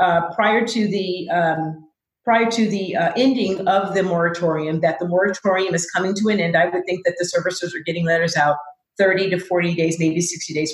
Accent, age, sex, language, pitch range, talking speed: American, 40-59, female, English, 170-205 Hz, 210 wpm